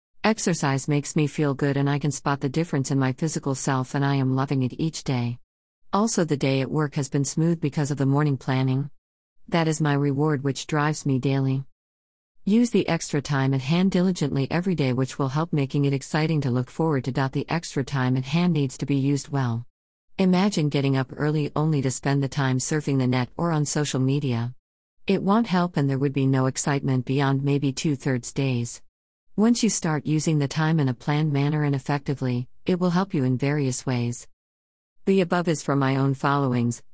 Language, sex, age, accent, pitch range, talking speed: English, female, 50-69, American, 130-160 Hz, 210 wpm